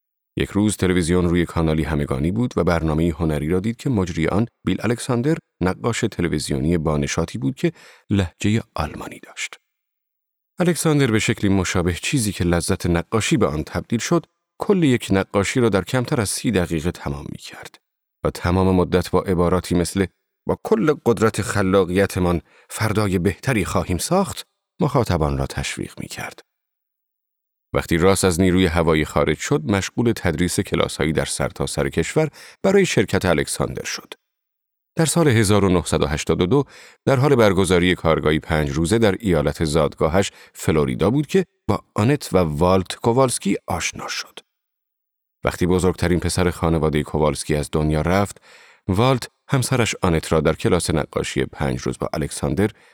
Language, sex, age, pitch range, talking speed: Persian, male, 40-59, 85-115 Hz, 145 wpm